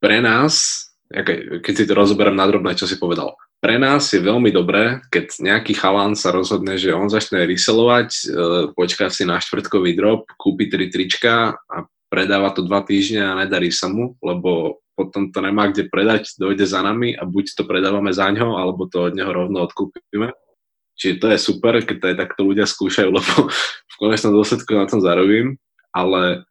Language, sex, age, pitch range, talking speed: Czech, male, 20-39, 90-105 Hz, 180 wpm